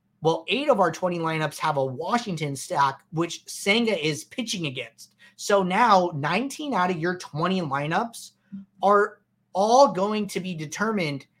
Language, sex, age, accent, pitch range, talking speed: English, male, 30-49, American, 155-195 Hz, 155 wpm